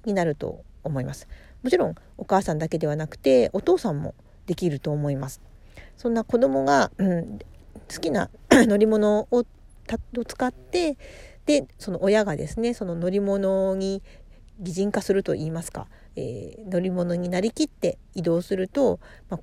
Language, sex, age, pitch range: Japanese, female, 40-59, 165-230 Hz